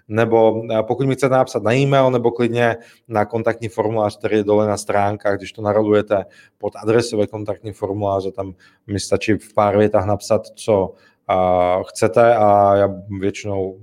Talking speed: 160 wpm